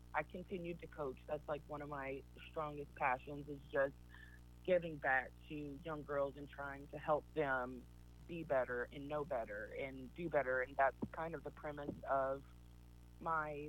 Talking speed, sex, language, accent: 170 wpm, female, English, American